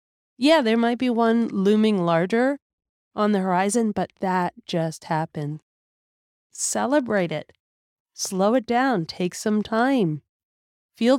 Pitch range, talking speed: 170-235 Hz, 125 wpm